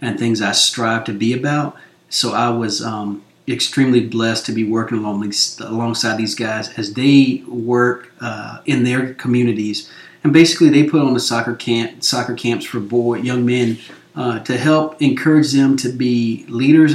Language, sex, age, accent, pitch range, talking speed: English, male, 30-49, American, 120-150 Hz, 175 wpm